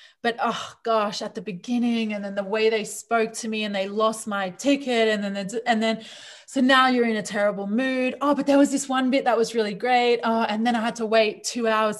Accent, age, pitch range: Australian, 20-39, 200-245 Hz